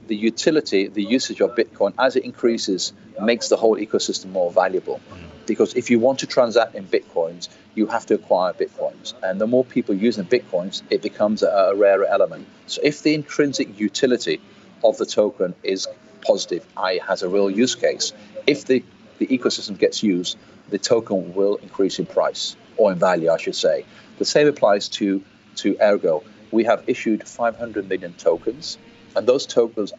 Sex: male